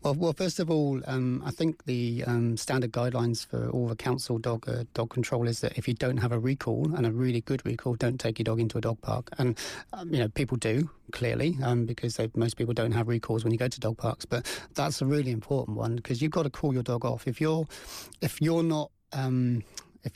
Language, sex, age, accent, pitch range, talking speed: English, male, 30-49, British, 120-140 Hz, 245 wpm